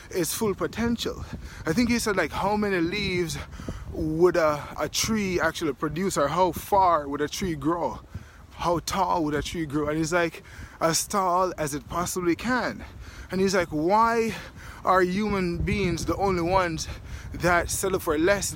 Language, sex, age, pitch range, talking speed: English, male, 20-39, 165-215 Hz, 170 wpm